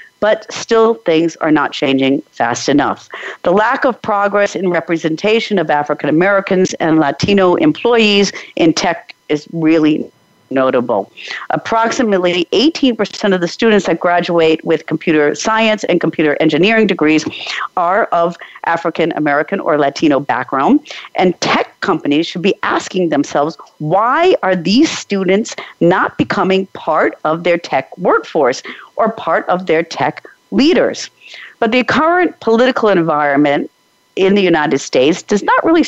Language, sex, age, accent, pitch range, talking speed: English, female, 50-69, American, 160-220 Hz, 135 wpm